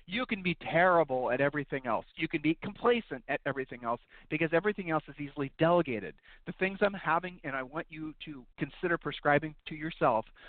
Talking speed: 190 wpm